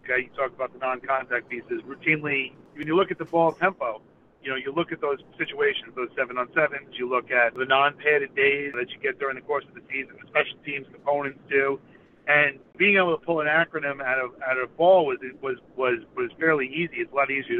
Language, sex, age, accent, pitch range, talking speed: English, male, 50-69, American, 130-170 Hz, 225 wpm